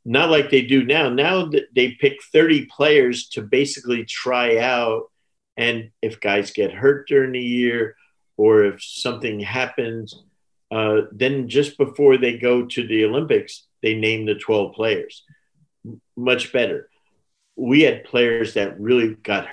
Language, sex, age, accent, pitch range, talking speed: English, male, 50-69, American, 105-140 Hz, 150 wpm